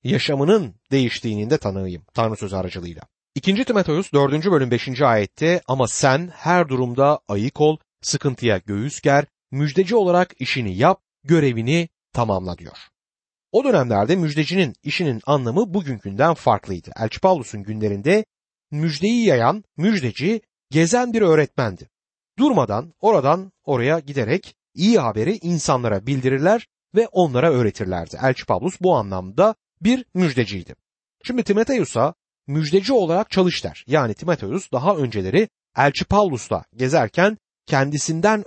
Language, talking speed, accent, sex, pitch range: Turkish, 115 wpm, native, male, 120-185 Hz